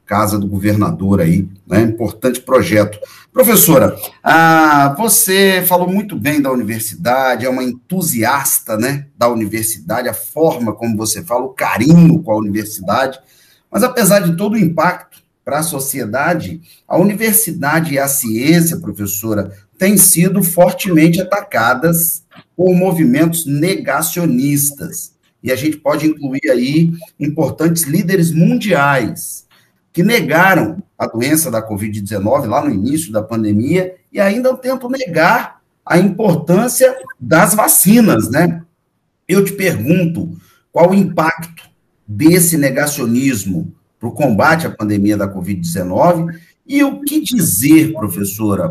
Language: Portuguese